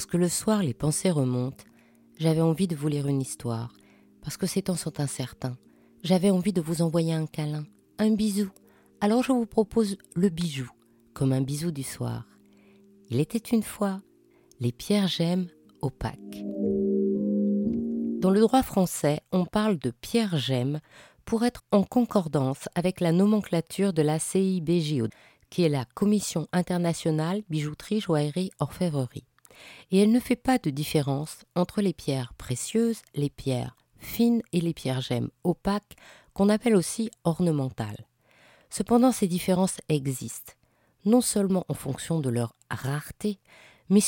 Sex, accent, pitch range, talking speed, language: female, French, 130-200 Hz, 150 wpm, French